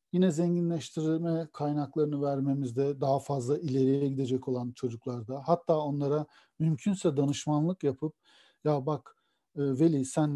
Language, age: Turkish, 50-69